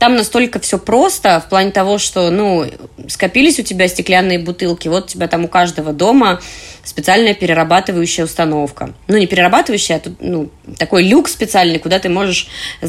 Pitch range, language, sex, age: 175-225 Hz, Russian, female, 20-39